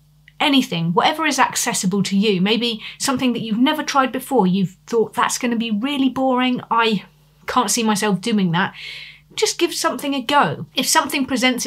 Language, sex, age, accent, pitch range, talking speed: English, female, 30-49, British, 190-245 Hz, 175 wpm